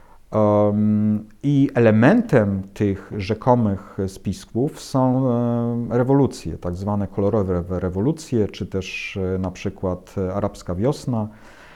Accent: native